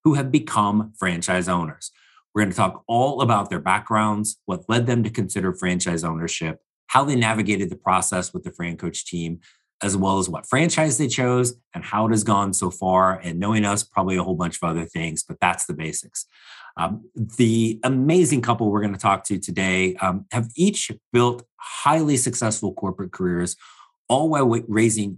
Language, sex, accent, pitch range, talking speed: English, male, American, 95-120 Hz, 185 wpm